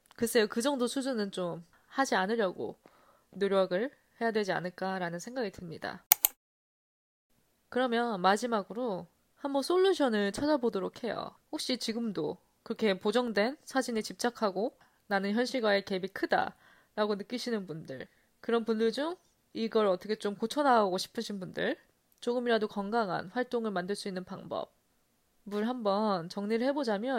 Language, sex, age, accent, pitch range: Korean, female, 20-39, native, 200-275 Hz